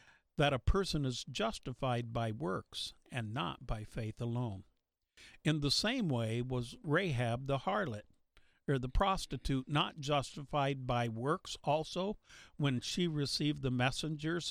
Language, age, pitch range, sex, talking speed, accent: English, 50-69, 125-155 Hz, male, 135 wpm, American